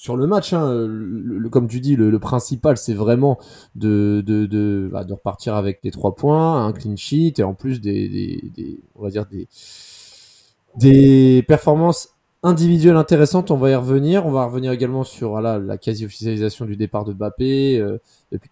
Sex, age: male, 20-39